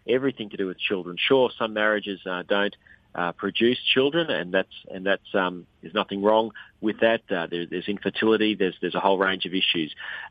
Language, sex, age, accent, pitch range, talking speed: English, male, 40-59, Australian, 95-110 Hz, 205 wpm